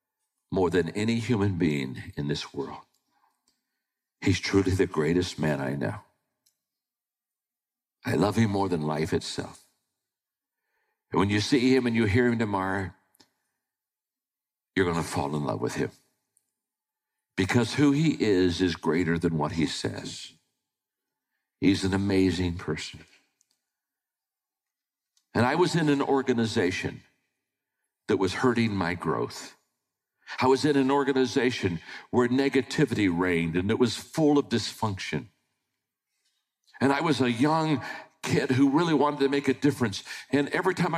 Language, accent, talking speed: English, American, 140 wpm